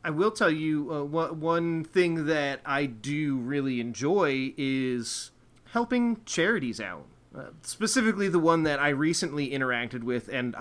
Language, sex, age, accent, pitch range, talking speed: English, male, 30-49, American, 140-180 Hz, 145 wpm